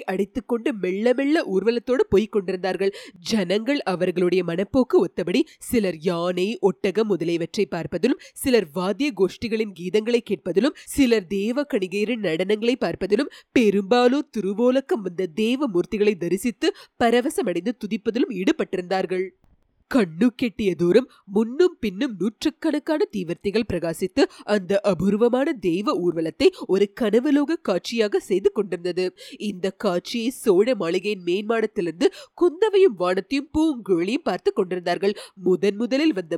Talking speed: 95 wpm